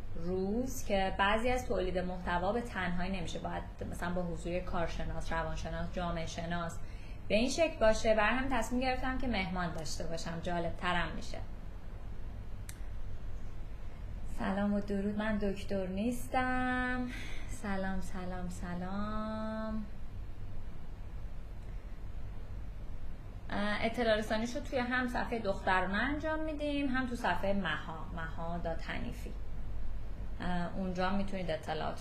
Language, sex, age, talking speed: Persian, female, 20-39, 110 wpm